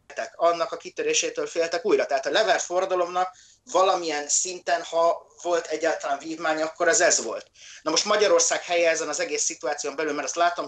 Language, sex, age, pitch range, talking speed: Hungarian, male, 30-49, 130-180 Hz, 170 wpm